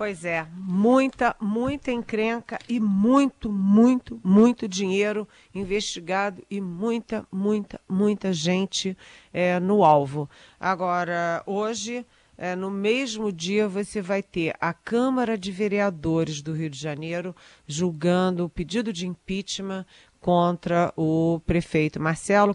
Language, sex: Portuguese, female